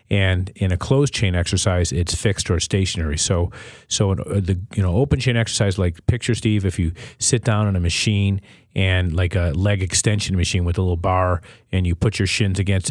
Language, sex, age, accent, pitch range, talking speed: English, male, 40-59, American, 95-115 Hz, 205 wpm